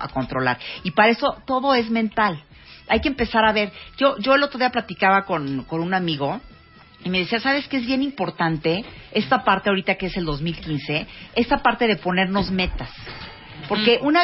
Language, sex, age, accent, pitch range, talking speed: Spanish, female, 40-59, Mexican, 160-235 Hz, 190 wpm